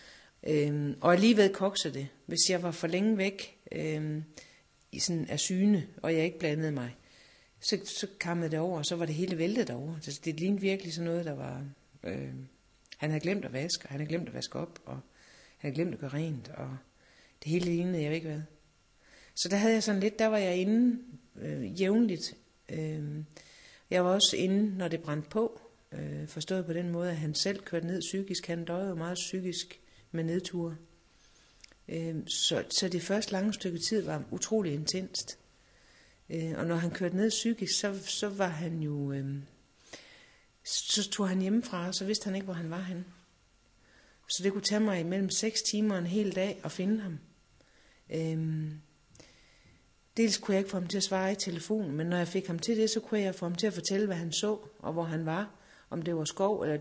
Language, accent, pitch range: Danish, native, 160-195 Hz